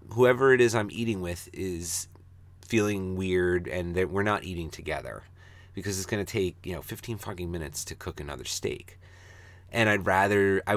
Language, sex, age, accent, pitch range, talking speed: English, male, 30-49, American, 90-110 Hz, 185 wpm